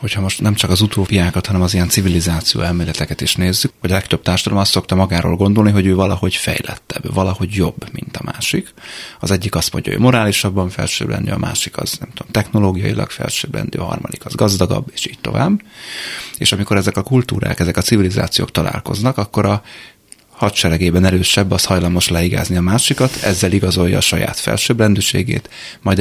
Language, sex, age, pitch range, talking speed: Hungarian, male, 30-49, 90-105 Hz, 180 wpm